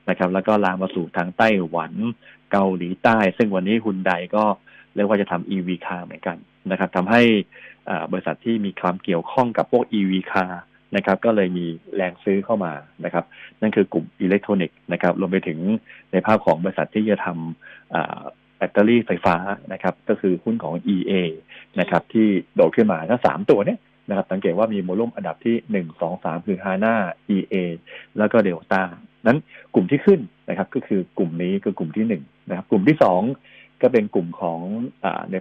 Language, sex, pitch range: Thai, male, 90-110 Hz